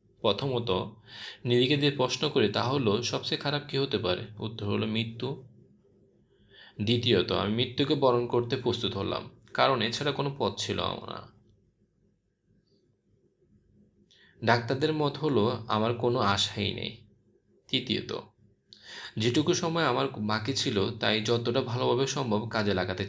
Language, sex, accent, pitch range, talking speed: Bengali, male, native, 100-125 Hz, 120 wpm